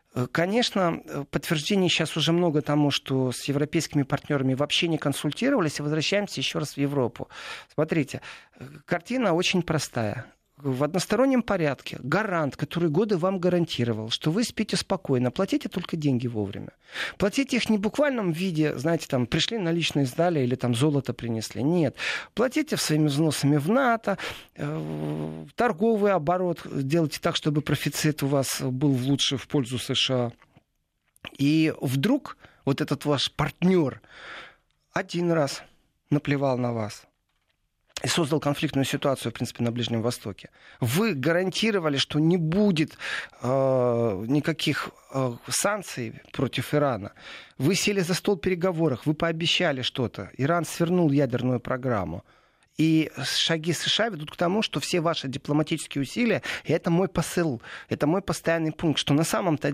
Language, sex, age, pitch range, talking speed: Russian, male, 40-59, 135-175 Hz, 140 wpm